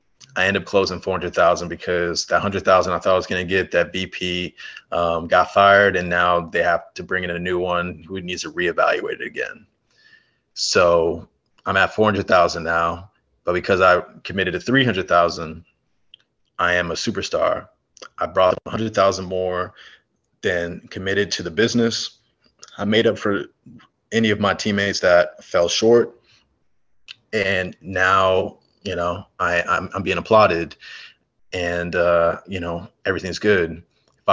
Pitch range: 85-105 Hz